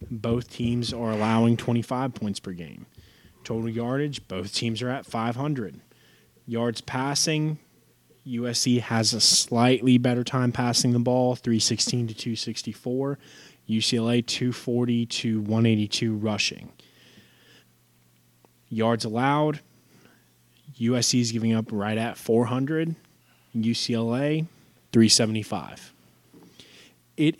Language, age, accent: English, 20-39, American